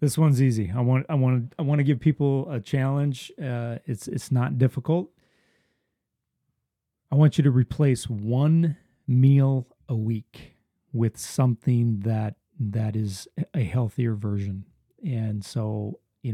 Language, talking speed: English, 145 wpm